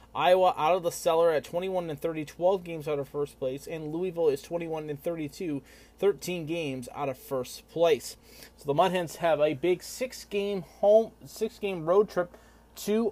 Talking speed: 180 wpm